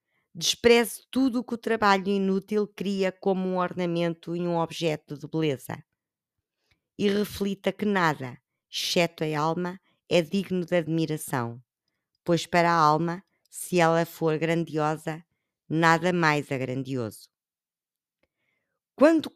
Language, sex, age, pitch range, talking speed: Portuguese, female, 20-39, 160-200 Hz, 125 wpm